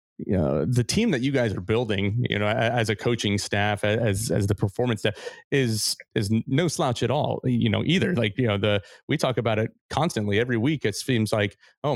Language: English